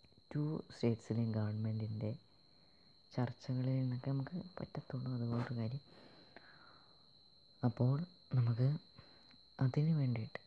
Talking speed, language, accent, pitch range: 85 wpm, Malayalam, native, 110-130 Hz